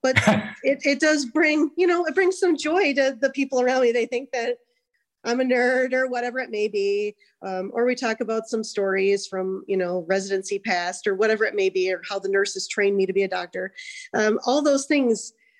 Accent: American